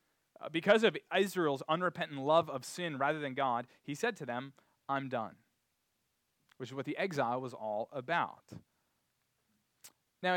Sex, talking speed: male, 145 wpm